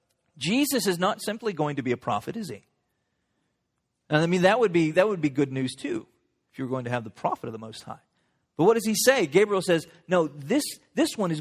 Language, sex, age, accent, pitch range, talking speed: English, male, 40-59, American, 155-215 Hz, 245 wpm